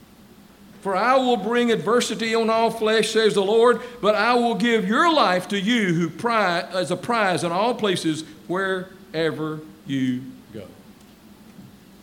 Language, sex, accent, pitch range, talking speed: English, male, American, 200-255 Hz, 150 wpm